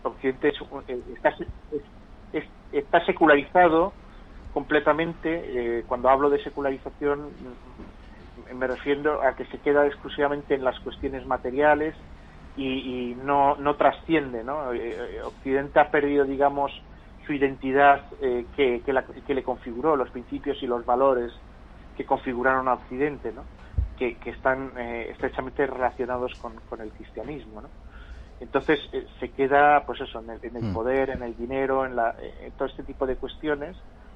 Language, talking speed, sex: Spanish, 150 wpm, male